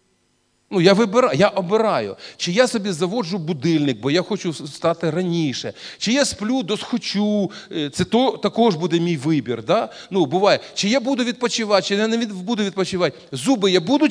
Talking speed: 175 wpm